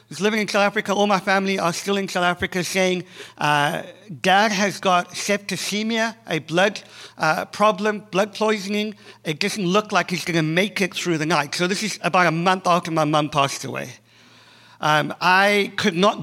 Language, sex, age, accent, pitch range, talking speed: English, male, 50-69, British, 175-210 Hz, 190 wpm